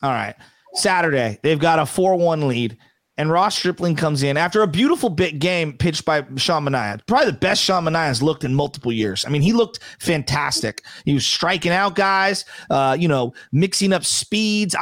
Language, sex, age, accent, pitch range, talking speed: English, male, 30-49, American, 160-215 Hz, 195 wpm